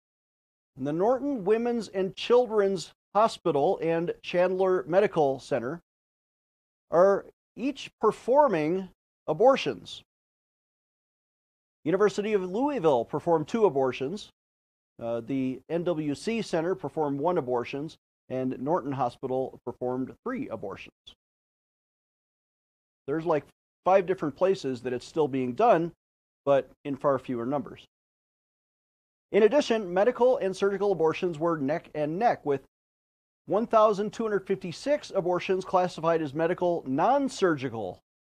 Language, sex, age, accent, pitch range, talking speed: English, male, 40-59, American, 135-195 Hz, 105 wpm